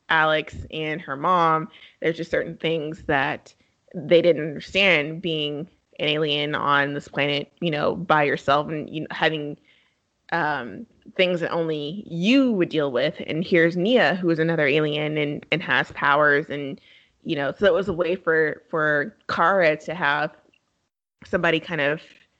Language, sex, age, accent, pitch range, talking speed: English, female, 20-39, American, 150-175 Hz, 160 wpm